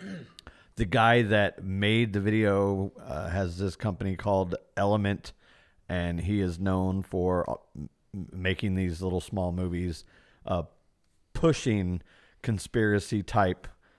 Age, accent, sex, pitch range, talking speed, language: 40-59, American, male, 90-115 Hz, 105 wpm, English